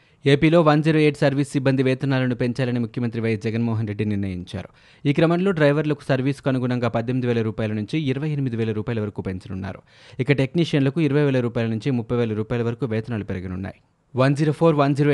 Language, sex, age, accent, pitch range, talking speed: Telugu, male, 20-39, native, 115-140 Hz, 160 wpm